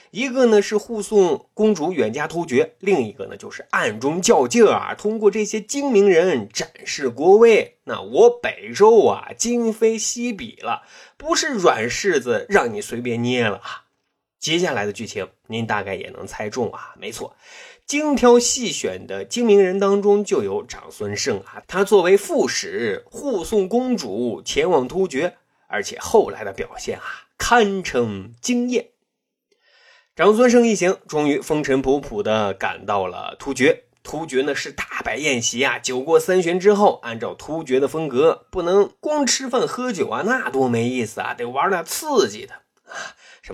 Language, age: Chinese, 30-49